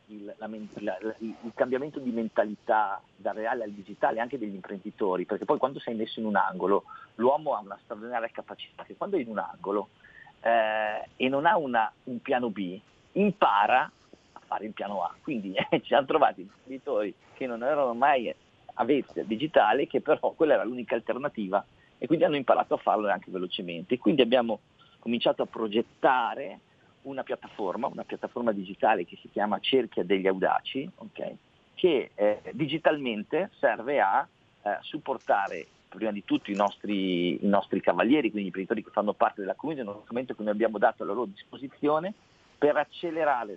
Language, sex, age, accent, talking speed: Italian, male, 40-59, native, 175 wpm